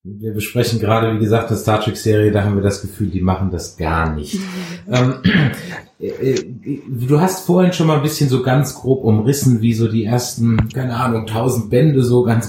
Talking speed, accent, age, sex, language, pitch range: 200 wpm, German, 30-49, male, German, 115-150 Hz